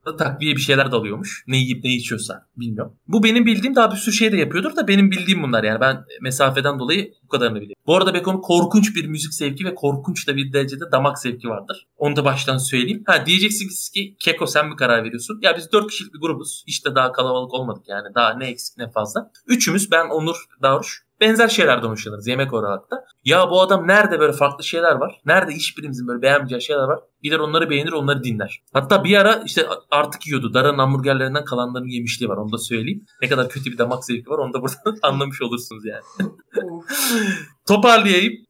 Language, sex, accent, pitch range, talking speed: Turkish, male, native, 125-170 Hz, 200 wpm